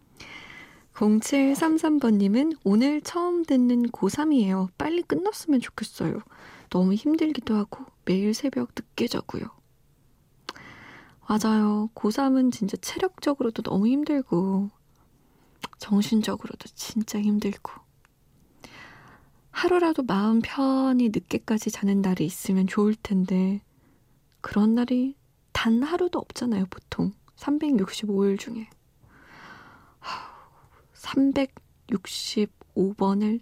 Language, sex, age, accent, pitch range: Korean, female, 20-39, native, 195-265 Hz